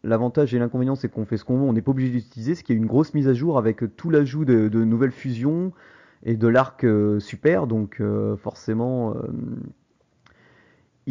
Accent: French